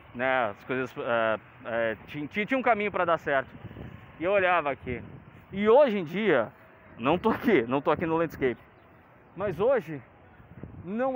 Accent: Brazilian